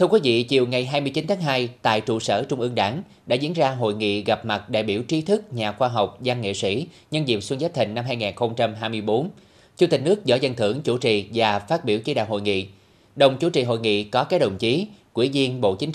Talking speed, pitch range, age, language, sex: 250 wpm, 105-140 Hz, 20-39, Vietnamese, male